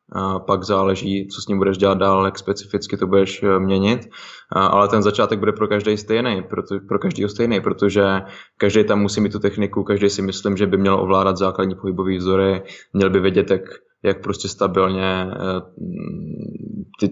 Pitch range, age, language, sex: 95-110 Hz, 20-39, Slovak, male